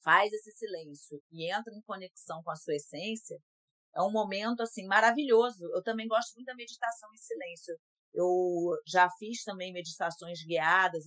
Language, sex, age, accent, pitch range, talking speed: Portuguese, female, 40-59, Brazilian, 175-230 Hz, 165 wpm